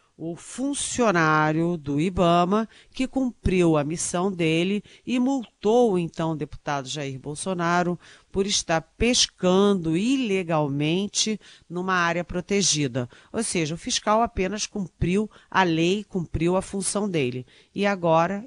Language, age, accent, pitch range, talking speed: Portuguese, 40-59, Brazilian, 155-200 Hz, 120 wpm